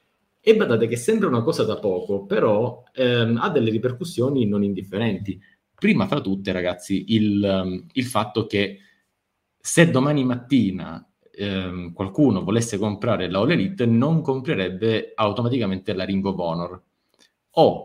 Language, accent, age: Italian, native, 30-49